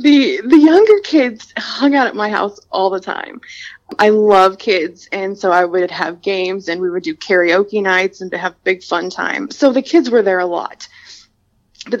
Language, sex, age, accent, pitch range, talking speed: English, female, 20-39, American, 185-245 Hz, 205 wpm